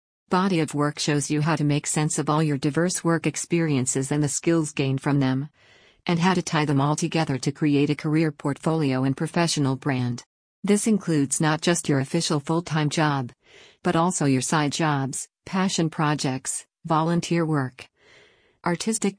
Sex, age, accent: female, 50-69, American